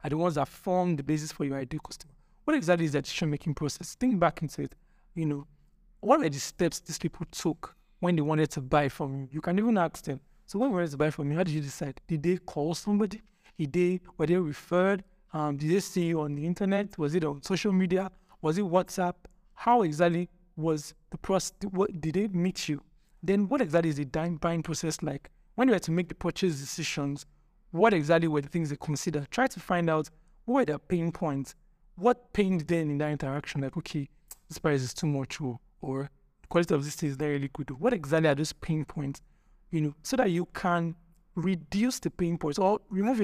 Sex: male